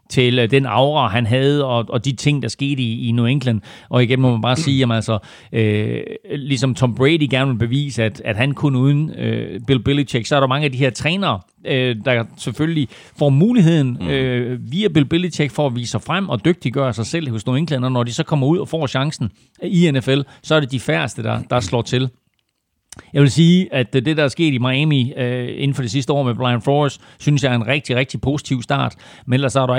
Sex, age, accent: male, 40-59, native